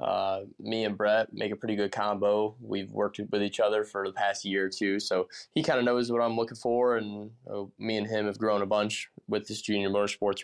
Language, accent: English, American